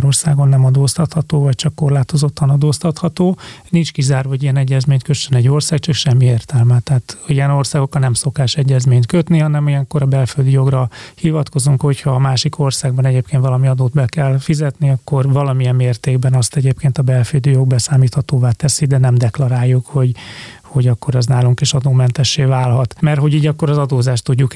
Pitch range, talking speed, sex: 130-150 Hz, 170 wpm, male